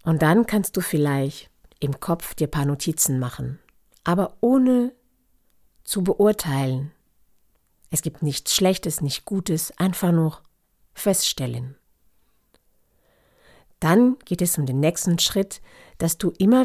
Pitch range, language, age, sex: 145-195 Hz, German, 50-69, female